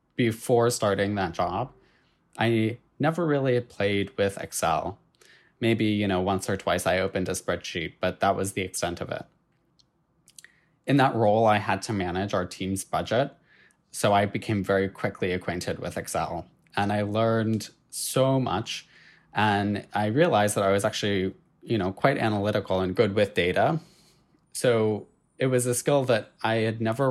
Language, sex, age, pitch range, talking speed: English, male, 20-39, 95-120 Hz, 165 wpm